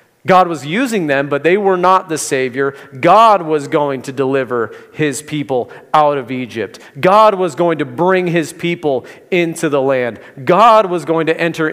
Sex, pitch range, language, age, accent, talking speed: male, 150-185 Hz, English, 40-59, American, 180 wpm